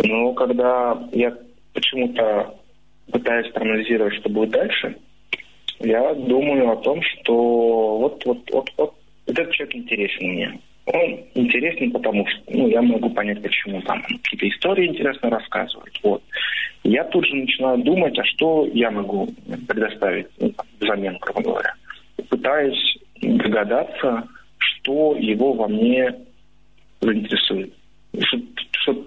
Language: Russian